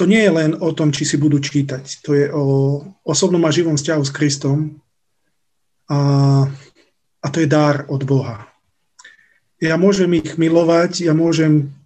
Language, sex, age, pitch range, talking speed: Slovak, male, 40-59, 145-165 Hz, 160 wpm